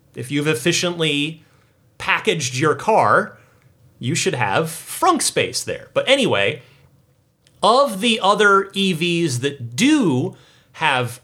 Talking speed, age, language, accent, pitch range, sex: 110 wpm, 30-49, English, American, 130-190 Hz, male